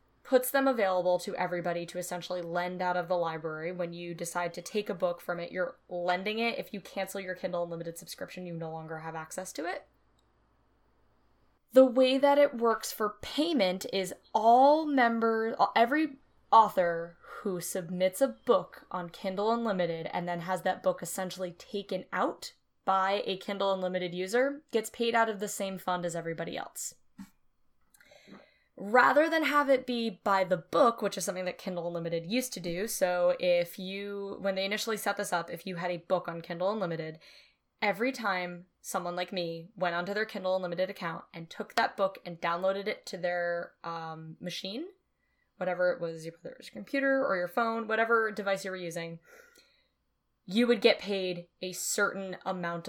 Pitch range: 175-220 Hz